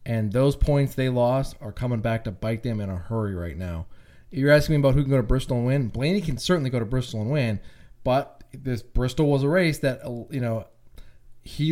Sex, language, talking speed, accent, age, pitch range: male, English, 230 wpm, American, 20-39, 115-145 Hz